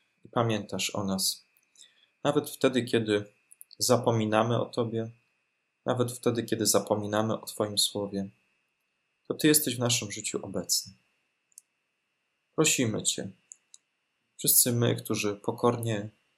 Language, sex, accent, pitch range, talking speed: Polish, male, native, 105-125 Hz, 110 wpm